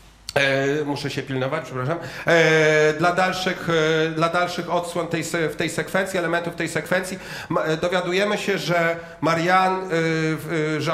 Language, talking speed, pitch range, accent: Polish, 115 wpm, 145-170 Hz, native